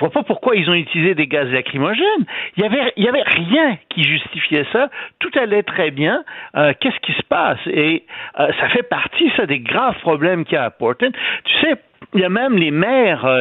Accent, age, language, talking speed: French, 50-69, French, 220 wpm